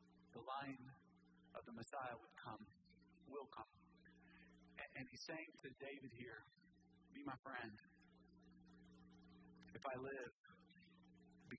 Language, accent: English, American